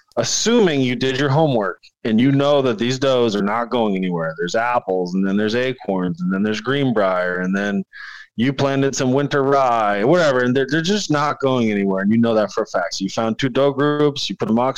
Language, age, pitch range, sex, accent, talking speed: English, 20-39, 115-140 Hz, male, American, 230 wpm